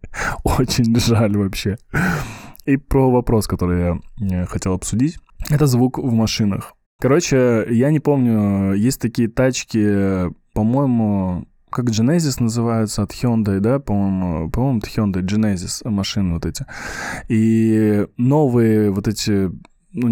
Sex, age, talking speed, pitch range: male, 20-39, 120 wpm, 105-130 Hz